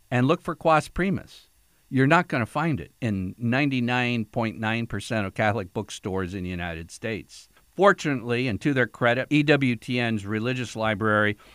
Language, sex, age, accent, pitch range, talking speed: English, male, 50-69, American, 110-155 Hz, 140 wpm